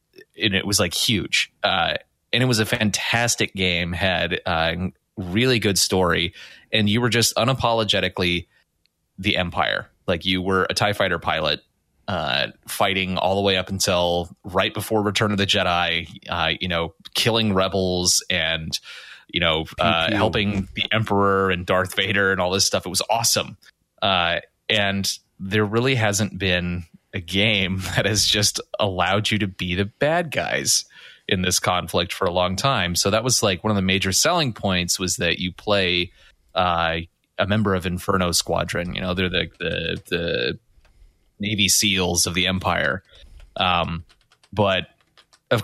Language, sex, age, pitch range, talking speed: English, male, 30-49, 90-105 Hz, 165 wpm